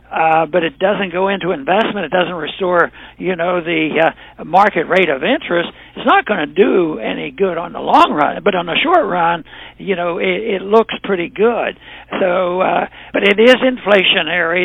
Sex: male